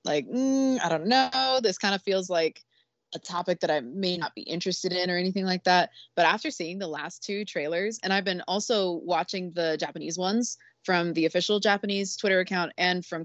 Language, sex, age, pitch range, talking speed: English, female, 20-39, 175-235 Hz, 210 wpm